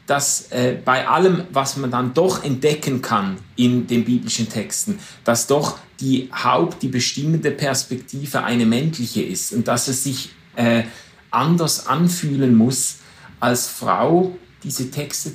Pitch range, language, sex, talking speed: 125-155 Hz, German, male, 140 wpm